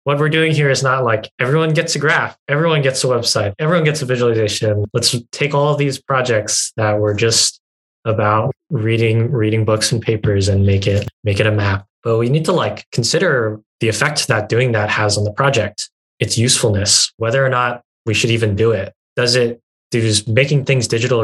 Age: 10-29